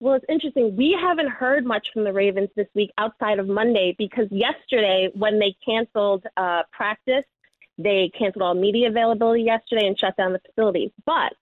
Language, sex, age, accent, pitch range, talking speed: English, female, 30-49, American, 210-260 Hz, 180 wpm